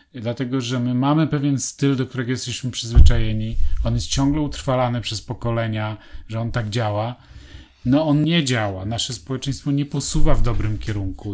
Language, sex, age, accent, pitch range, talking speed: Polish, male, 40-59, native, 110-140 Hz, 165 wpm